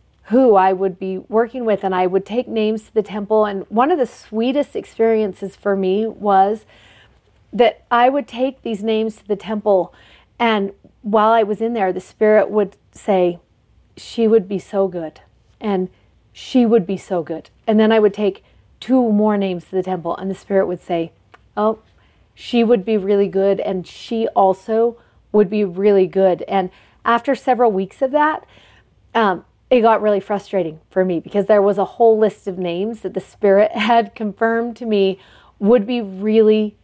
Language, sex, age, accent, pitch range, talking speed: English, female, 40-59, American, 190-230 Hz, 185 wpm